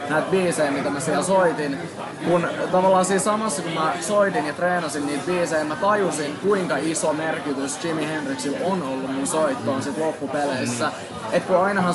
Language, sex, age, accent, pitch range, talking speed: Finnish, male, 20-39, native, 150-180 Hz, 165 wpm